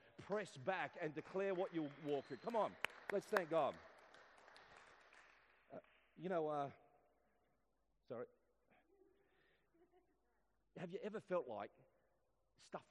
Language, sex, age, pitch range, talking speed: English, male, 40-59, 130-175 Hz, 110 wpm